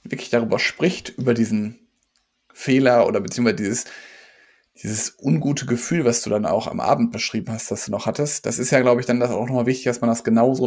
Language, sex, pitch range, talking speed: German, male, 115-140 Hz, 215 wpm